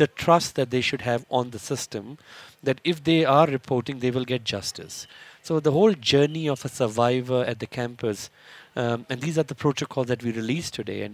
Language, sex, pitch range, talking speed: English, male, 120-150 Hz, 210 wpm